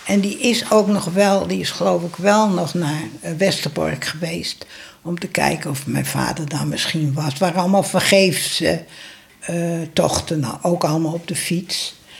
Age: 60-79